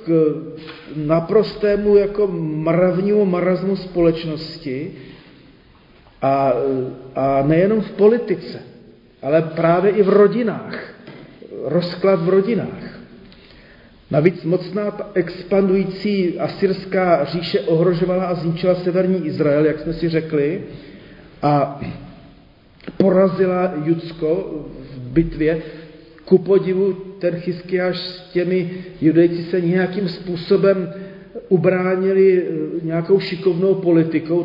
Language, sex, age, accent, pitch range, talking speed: Czech, male, 40-59, native, 160-190 Hz, 90 wpm